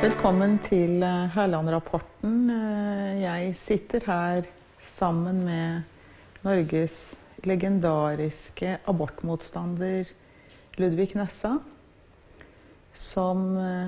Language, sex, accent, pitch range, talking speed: English, female, Swedish, 175-205 Hz, 60 wpm